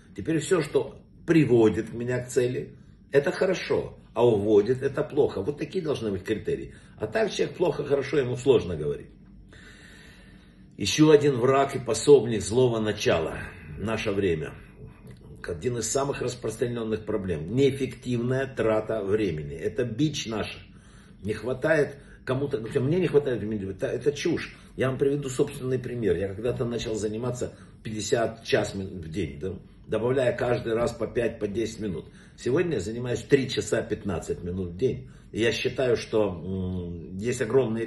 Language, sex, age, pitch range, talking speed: Russian, male, 60-79, 100-130 Hz, 145 wpm